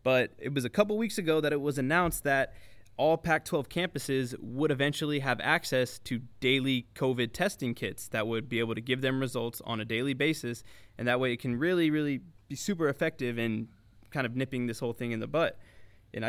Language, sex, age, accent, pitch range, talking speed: English, male, 20-39, American, 120-150 Hz, 210 wpm